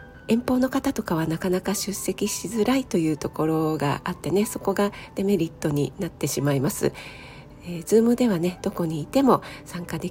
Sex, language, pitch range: female, Japanese, 160-200 Hz